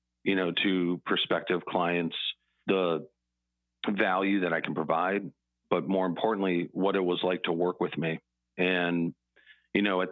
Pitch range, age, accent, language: 75-90 Hz, 40-59, American, English